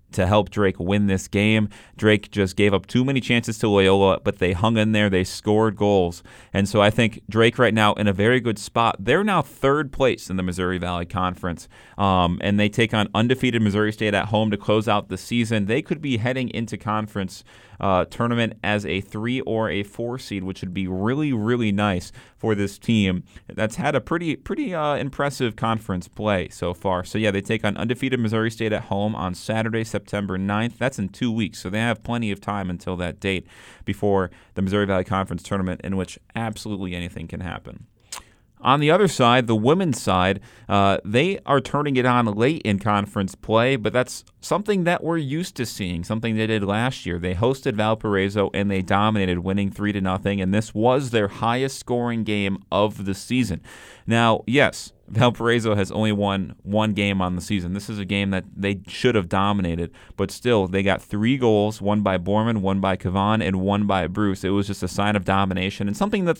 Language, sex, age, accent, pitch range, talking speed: English, male, 30-49, American, 95-115 Hz, 205 wpm